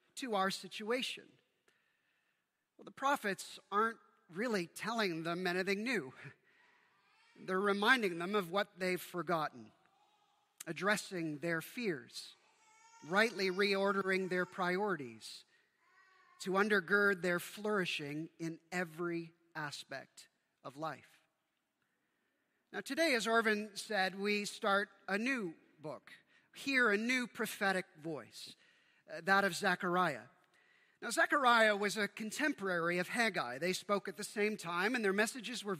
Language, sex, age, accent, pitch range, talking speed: English, male, 40-59, American, 180-240 Hz, 120 wpm